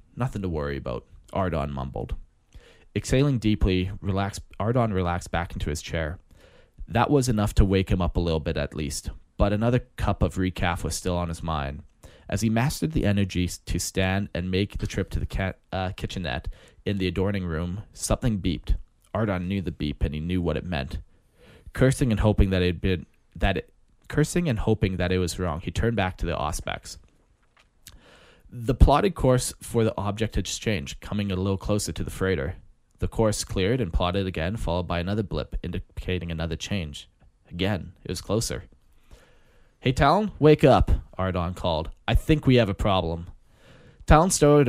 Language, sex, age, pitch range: English, male, 20-39, 85-110 Hz